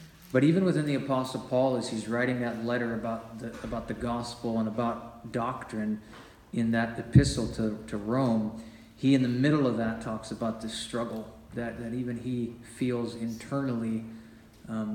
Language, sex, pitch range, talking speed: English, male, 115-125 Hz, 170 wpm